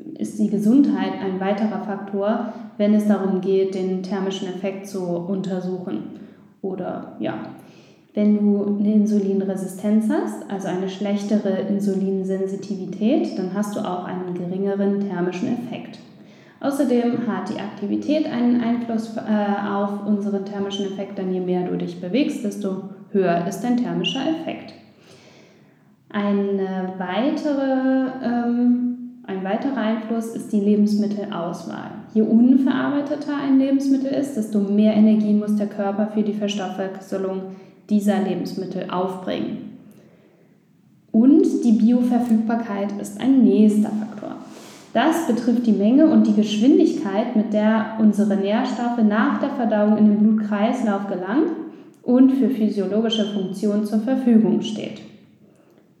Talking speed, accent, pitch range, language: 120 wpm, German, 195-240 Hz, German